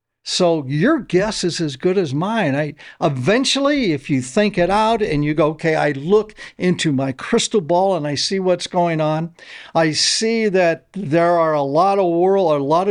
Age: 60-79